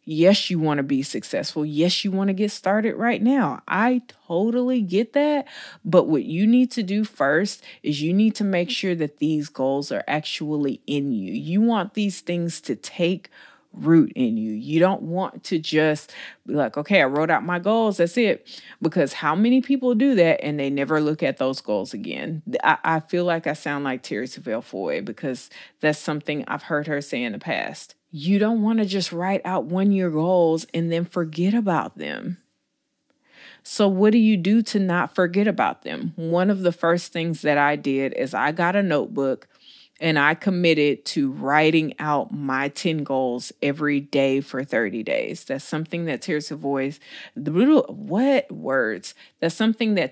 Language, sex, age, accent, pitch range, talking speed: English, female, 30-49, American, 150-200 Hz, 190 wpm